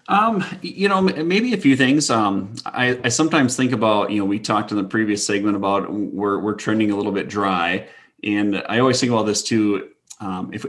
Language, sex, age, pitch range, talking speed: English, male, 20-39, 100-115 Hz, 215 wpm